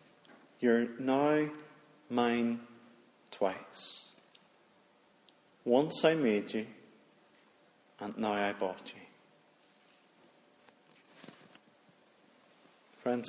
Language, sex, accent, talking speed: English, male, British, 65 wpm